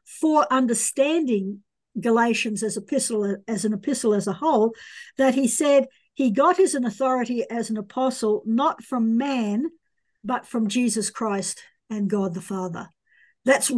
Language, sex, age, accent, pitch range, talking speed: English, female, 60-79, Australian, 215-270 Hz, 145 wpm